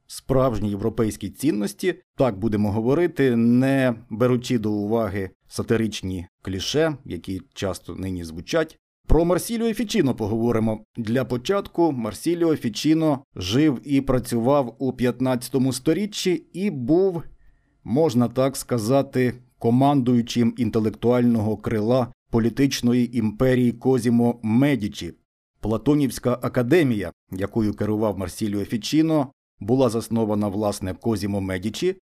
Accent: native